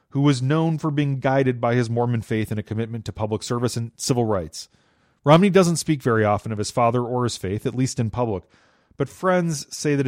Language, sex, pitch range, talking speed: English, male, 115-140 Hz, 225 wpm